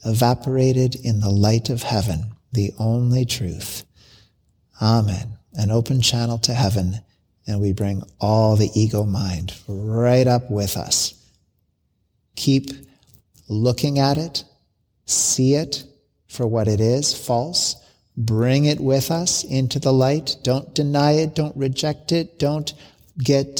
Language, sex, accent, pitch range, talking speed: English, male, American, 110-140 Hz, 130 wpm